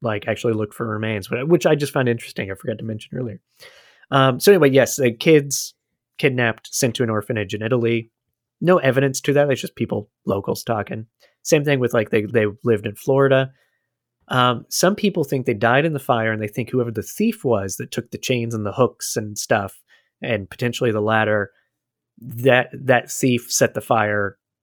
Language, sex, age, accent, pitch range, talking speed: English, male, 30-49, American, 110-140 Hz, 195 wpm